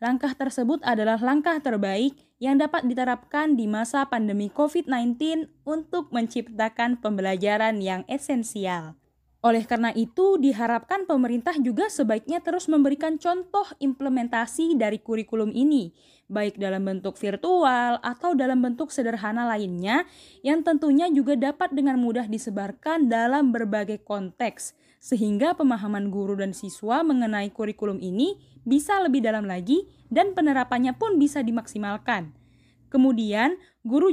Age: 10-29